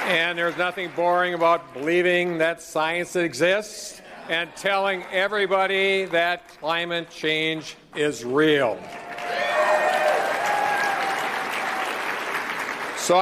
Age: 50-69